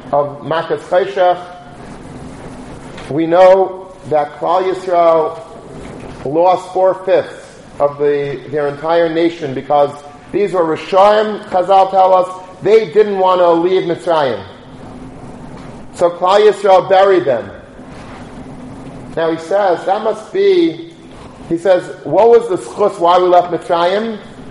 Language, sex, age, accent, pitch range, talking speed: English, male, 40-59, American, 155-205 Hz, 120 wpm